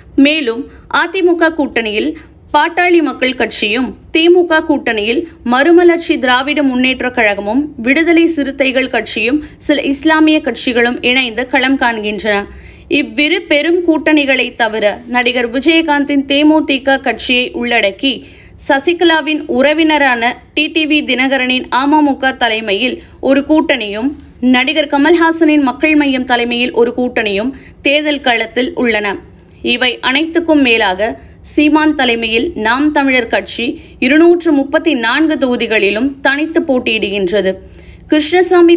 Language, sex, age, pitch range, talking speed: Tamil, female, 20-39, 235-310 Hz, 95 wpm